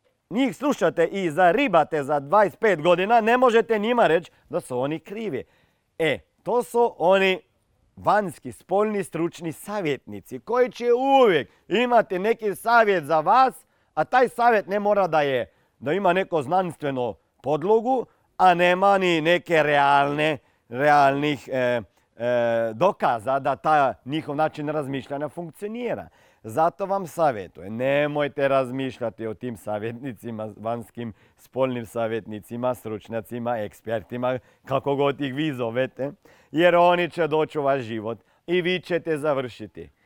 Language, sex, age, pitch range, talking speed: Croatian, male, 40-59, 125-175 Hz, 130 wpm